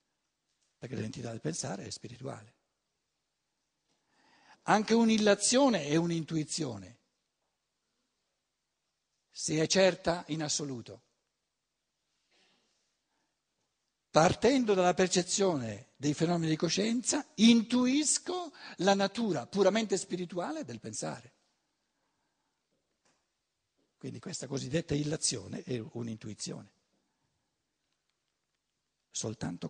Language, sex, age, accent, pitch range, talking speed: Italian, male, 60-79, native, 120-195 Hz, 75 wpm